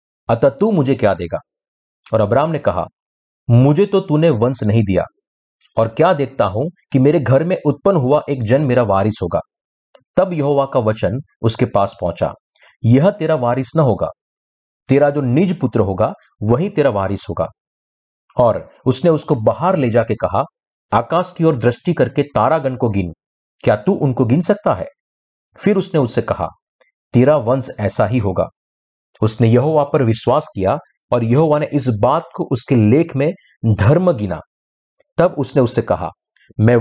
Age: 50-69